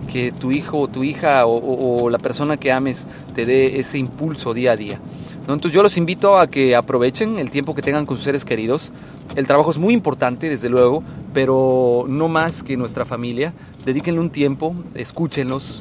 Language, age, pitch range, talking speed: Spanish, 30-49, 130-155 Hz, 200 wpm